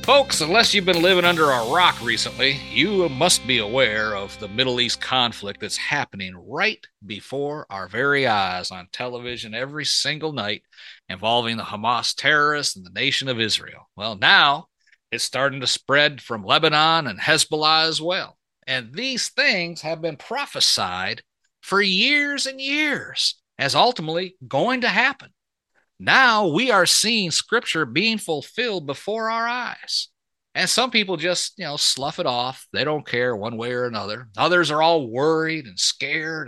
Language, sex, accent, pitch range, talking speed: English, male, American, 125-190 Hz, 160 wpm